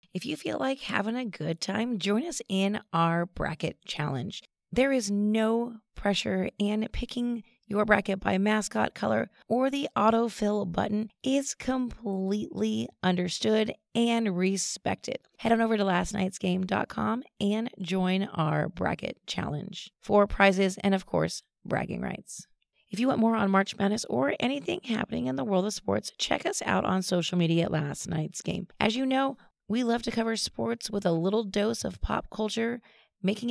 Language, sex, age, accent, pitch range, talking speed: English, female, 30-49, American, 180-225 Hz, 165 wpm